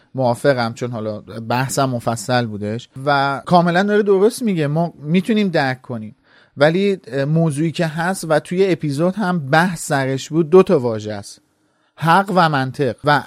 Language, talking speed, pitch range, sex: Persian, 150 wpm, 125-165 Hz, male